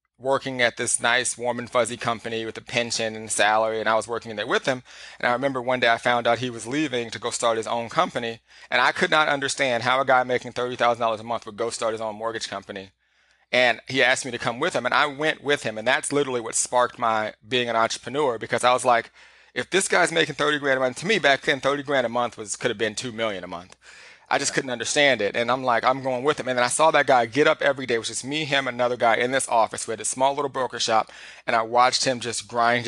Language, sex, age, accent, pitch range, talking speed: English, male, 30-49, American, 115-130 Hz, 270 wpm